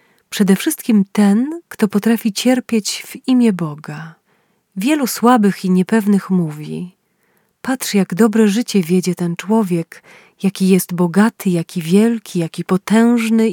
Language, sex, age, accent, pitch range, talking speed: Polish, female, 30-49, native, 185-225 Hz, 125 wpm